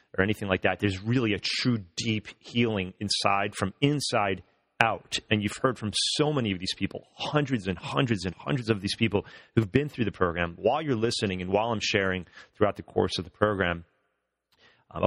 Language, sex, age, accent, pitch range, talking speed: English, male, 30-49, American, 100-125 Hz, 200 wpm